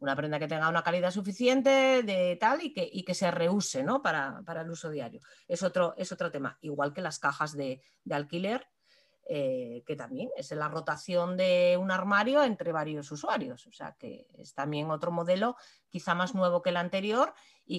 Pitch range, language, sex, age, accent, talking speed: 150-200 Hz, Spanish, female, 30-49, Spanish, 200 wpm